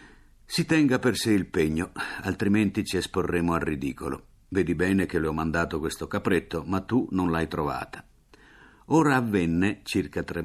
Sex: male